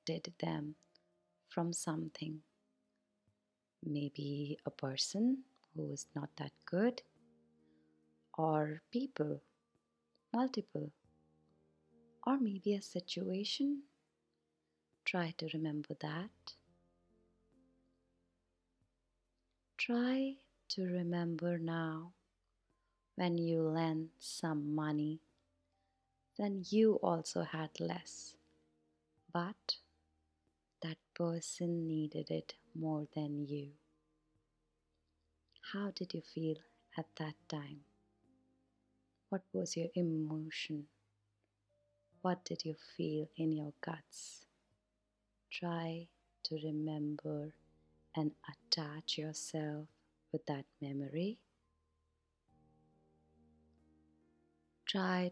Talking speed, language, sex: 80 wpm, English, female